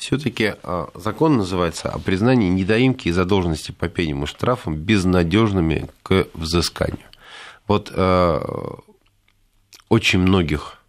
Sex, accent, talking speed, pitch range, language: male, native, 110 wpm, 80-100 Hz, Russian